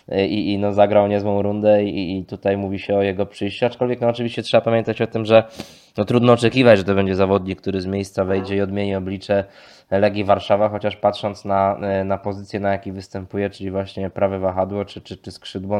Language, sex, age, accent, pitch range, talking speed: Polish, male, 20-39, native, 100-115 Hz, 205 wpm